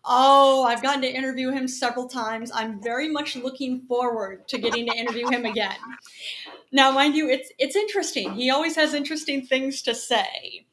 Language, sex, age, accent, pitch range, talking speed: English, female, 30-49, American, 225-285 Hz, 180 wpm